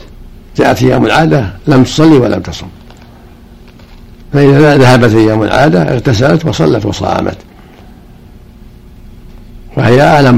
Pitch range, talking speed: 105-130 Hz, 95 wpm